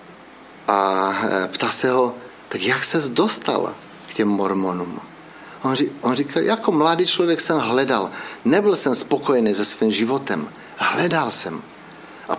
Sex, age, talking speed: male, 60-79, 140 wpm